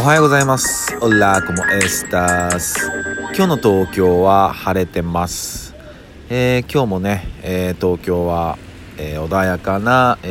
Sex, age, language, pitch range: male, 40-59, Japanese, 85-105 Hz